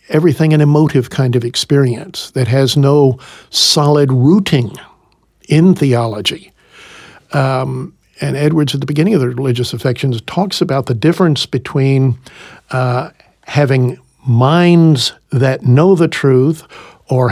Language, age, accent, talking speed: English, 60-79, American, 125 wpm